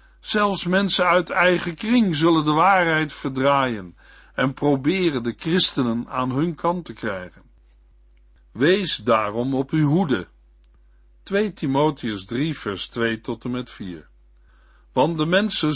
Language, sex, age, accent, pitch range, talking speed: Dutch, male, 60-79, Dutch, 120-170 Hz, 135 wpm